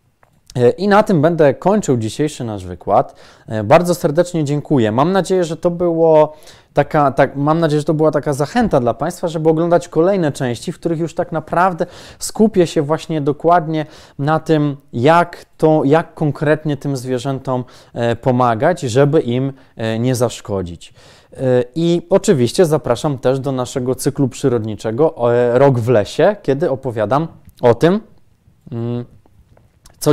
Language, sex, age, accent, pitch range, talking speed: Polish, male, 20-39, native, 125-160 Hz, 135 wpm